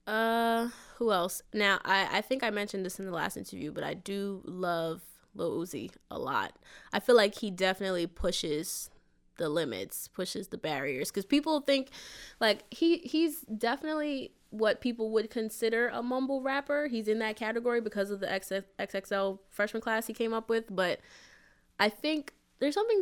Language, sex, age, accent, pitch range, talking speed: English, female, 20-39, American, 185-240 Hz, 170 wpm